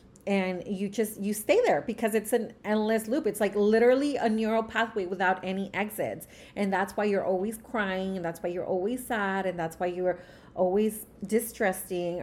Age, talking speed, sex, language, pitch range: 30-49, 185 wpm, female, English, 185-225 Hz